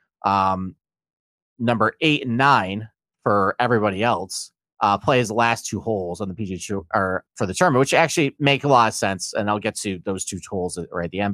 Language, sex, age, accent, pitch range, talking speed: English, male, 30-49, American, 100-125 Hz, 210 wpm